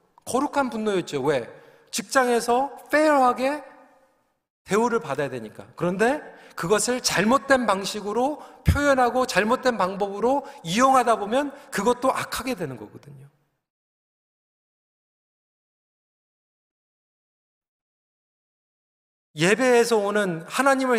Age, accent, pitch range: 40-59, native, 175-260 Hz